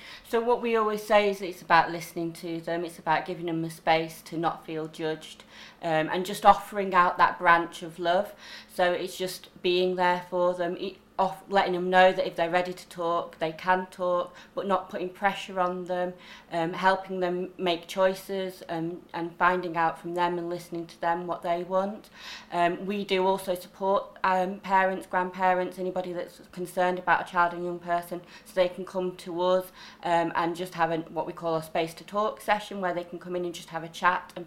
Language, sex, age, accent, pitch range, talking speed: English, female, 30-49, British, 175-185 Hz, 210 wpm